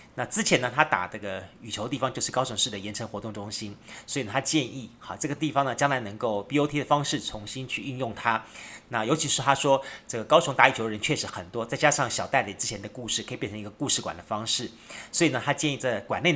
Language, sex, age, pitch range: Chinese, male, 30-49, 110-145 Hz